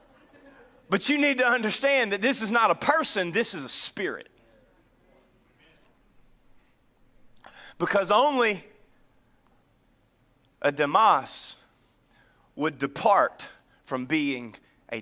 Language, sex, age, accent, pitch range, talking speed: English, male, 30-49, American, 125-160 Hz, 95 wpm